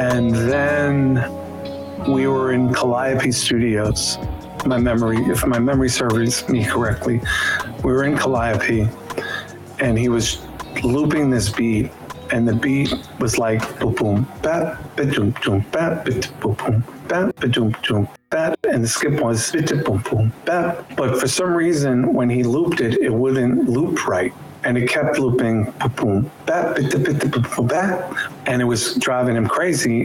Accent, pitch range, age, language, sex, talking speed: American, 115-130 Hz, 50-69, English, male, 155 wpm